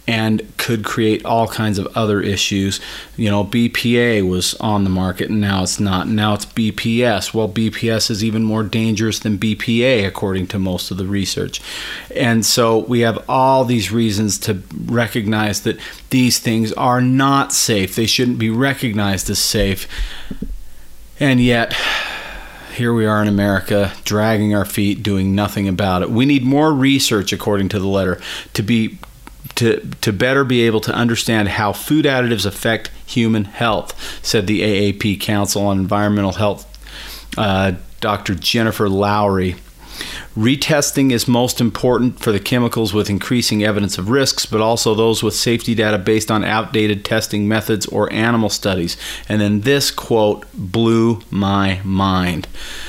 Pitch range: 100-120 Hz